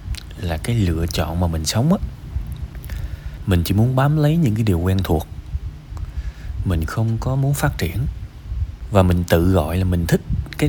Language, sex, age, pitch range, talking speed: Vietnamese, male, 20-39, 85-115 Hz, 180 wpm